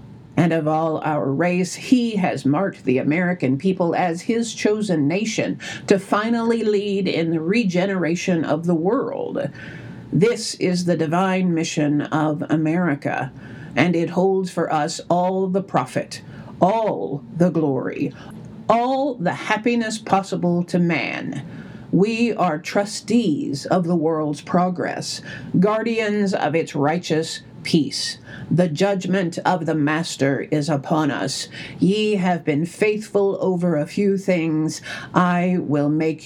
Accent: American